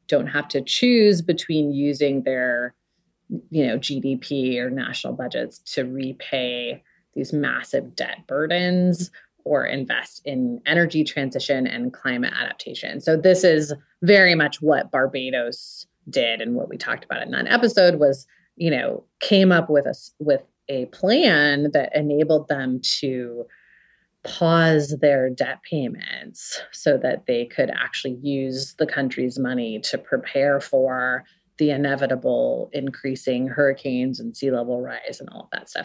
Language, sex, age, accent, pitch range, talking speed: English, female, 30-49, American, 130-165 Hz, 145 wpm